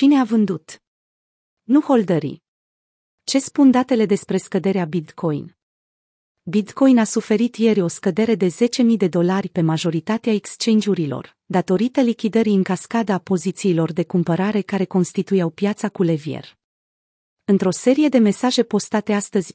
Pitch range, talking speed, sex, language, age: 180-225 Hz, 130 wpm, female, Romanian, 30-49